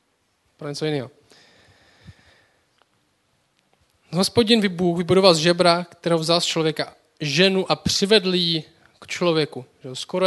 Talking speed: 115 wpm